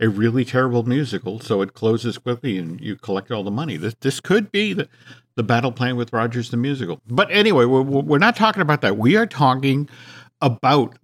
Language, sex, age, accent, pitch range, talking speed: English, male, 50-69, American, 120-145 Hz, 205 wpm